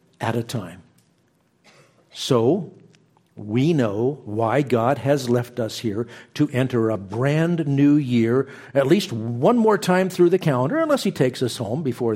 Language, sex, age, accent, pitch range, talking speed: English, male, 50-69, American, 115-145 Hz, 160 wpm